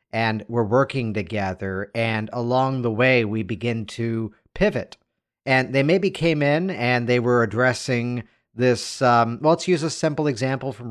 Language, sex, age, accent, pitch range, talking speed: English, male, 50-69, American, 110-135 Hz, 165 wpm